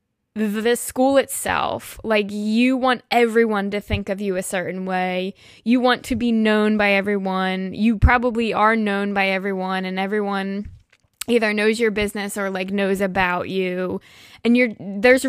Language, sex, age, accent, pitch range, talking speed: English, female, 10-29, American, 195-240 Hz, 160 wpm